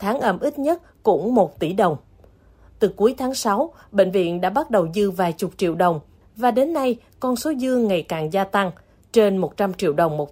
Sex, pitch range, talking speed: female, 180-240 Hz, 215 wpm